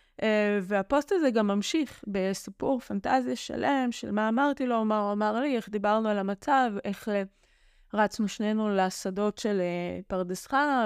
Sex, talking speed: female, 155 wpm